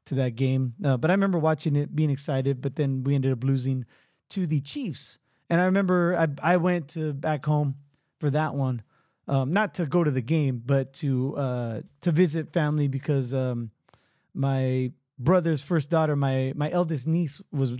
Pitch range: 135-180 Hz